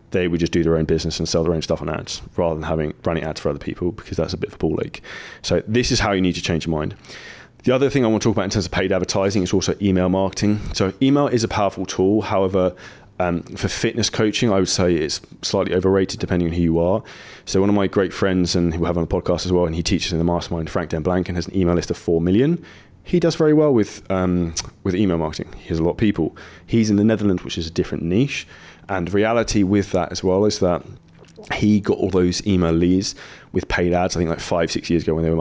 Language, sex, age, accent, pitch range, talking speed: English, male, 20-39, British, 85-105 Hz, 270 wpm